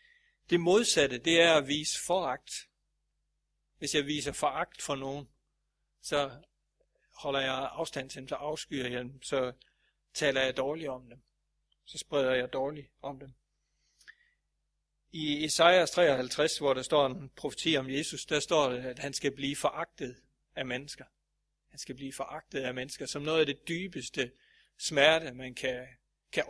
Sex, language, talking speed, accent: male, Danish, 155 wpm, native